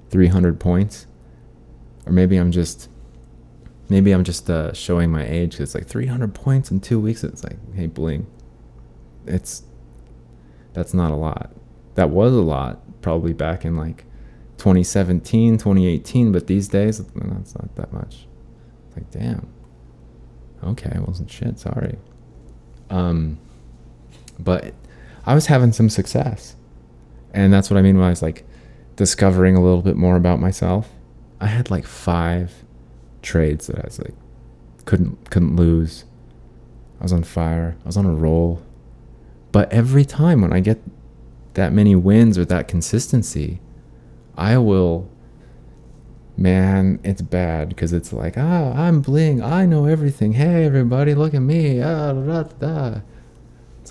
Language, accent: English, American